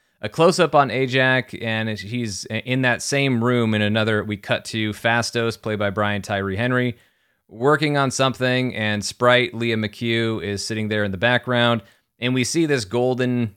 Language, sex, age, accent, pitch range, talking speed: English, male, 30-49, American, 100-120 Hz, 175 wpm